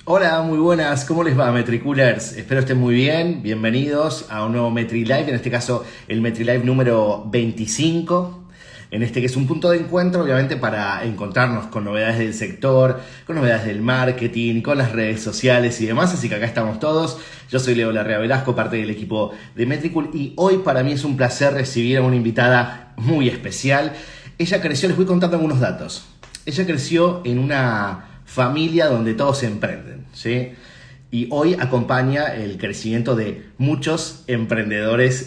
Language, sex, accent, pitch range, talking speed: Spanish, male, Argentinian, 110-140 Hz, 170 wpm